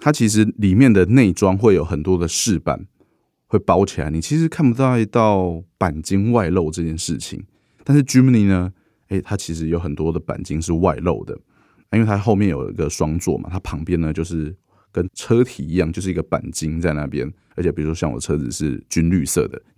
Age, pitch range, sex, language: 20-39, 80-105 Hz, male, Chinese